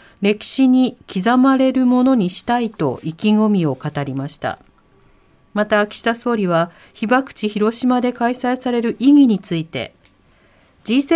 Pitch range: 190-270 Hz